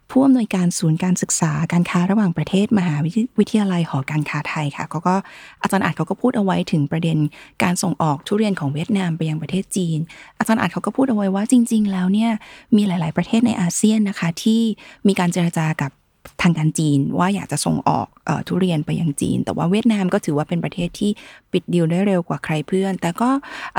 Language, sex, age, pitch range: Thai, female, 20-39, 165-215 Hz